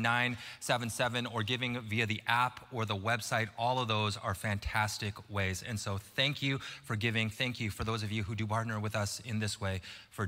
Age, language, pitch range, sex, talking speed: 20-39, English, 120-165 Hz, male, 210 wpm